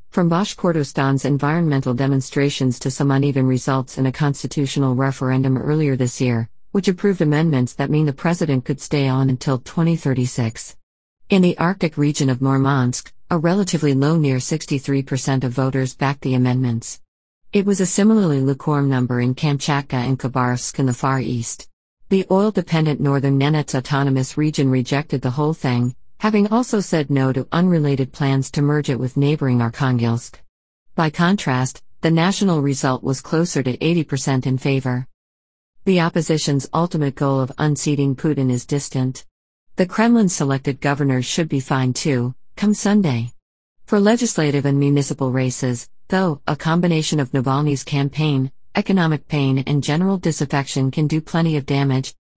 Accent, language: American, English